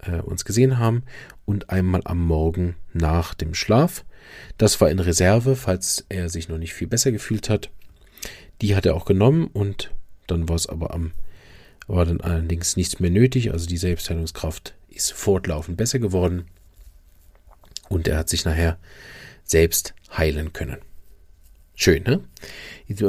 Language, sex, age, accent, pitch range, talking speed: German, male, 40-59, German, 85-105 Hz, 150 wpm